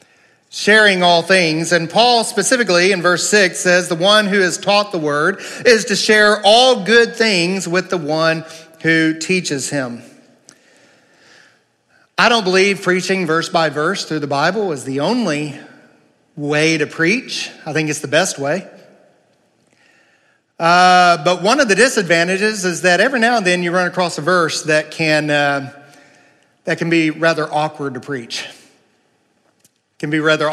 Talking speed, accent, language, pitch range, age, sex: 160 wpm, American, English, 150-185 Hz, 40-59, male